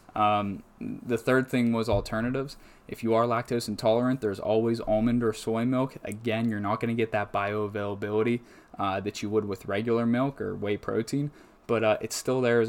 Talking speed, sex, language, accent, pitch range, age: 195 wpm, male, English, American, 105-115 Hz, 20-39